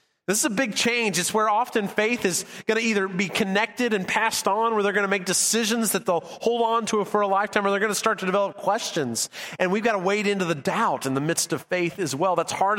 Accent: American